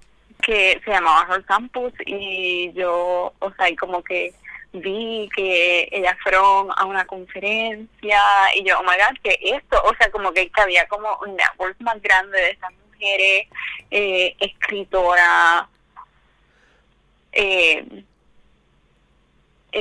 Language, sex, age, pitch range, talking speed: Spanish, female, 20-39, 185-215 Hz, 125 wpm